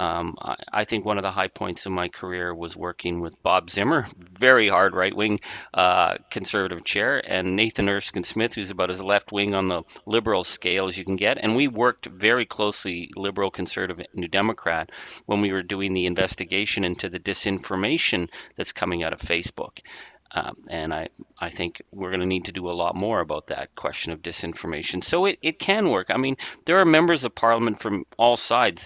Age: 40-59